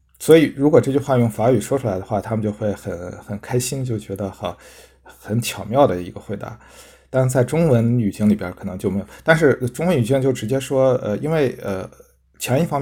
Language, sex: Chinese, male